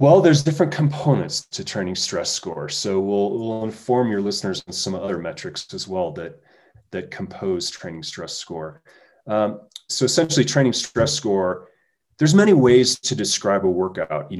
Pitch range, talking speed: 95-130 Hz, 165 wpm